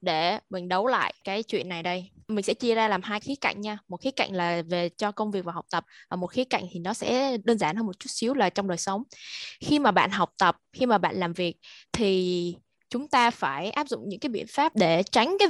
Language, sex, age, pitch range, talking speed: Vietnamese, female, 10-29, 185-240 Hz, 265 wpm